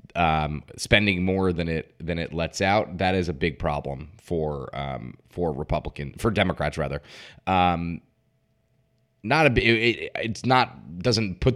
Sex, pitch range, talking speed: male, 85-110 Hz, 150 wpm